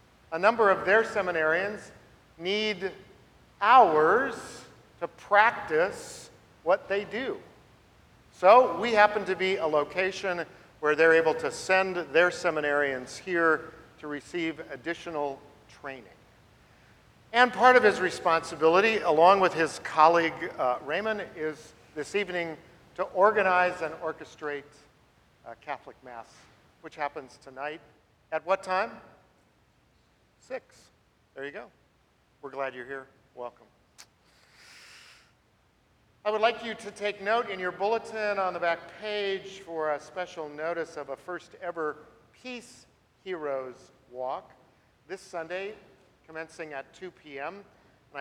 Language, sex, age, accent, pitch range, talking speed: English, male, 50-69, American, 145-195 Hz, 125 wpm